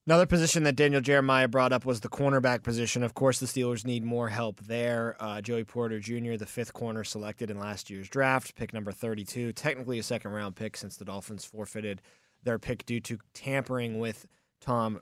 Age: 20-39